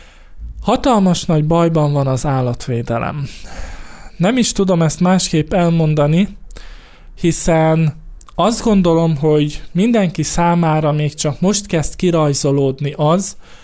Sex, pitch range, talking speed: male, 145-185 Hz, 105 wpm